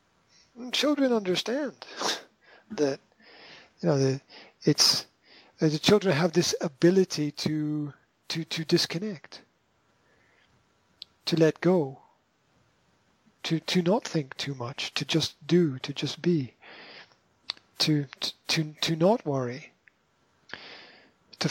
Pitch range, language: 140-175 Hz, English